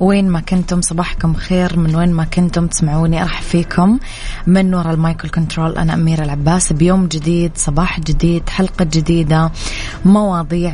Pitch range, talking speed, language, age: 160-185 Hz, 145 wpm, Arabic, 20-39